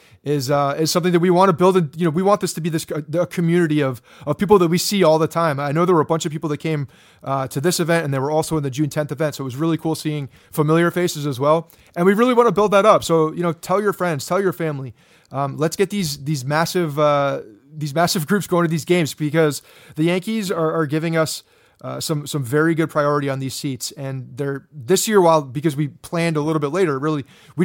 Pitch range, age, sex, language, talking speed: 140-170 Hz, 30-49, male, English, 265 wpm